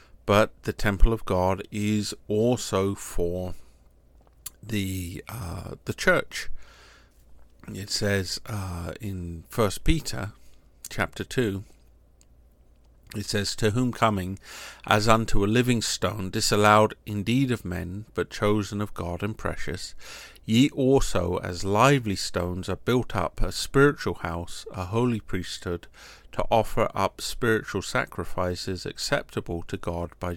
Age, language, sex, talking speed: 50-69, English, male, 125 wpm